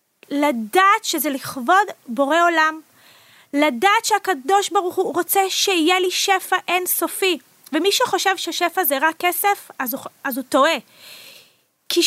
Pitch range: 290-385 Hz